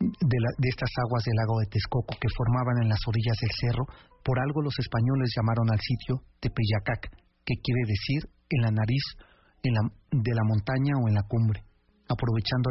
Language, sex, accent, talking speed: Spanish, male, Mexican, 190 wpm